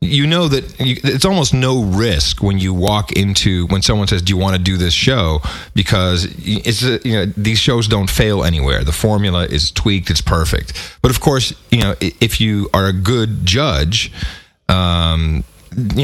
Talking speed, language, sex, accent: 195 wpm, English, male, American